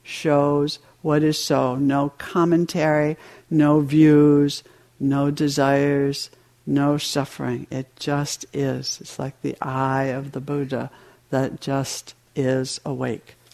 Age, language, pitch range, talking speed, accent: 60-79, English, 135-170 Hz, 115 wpm, American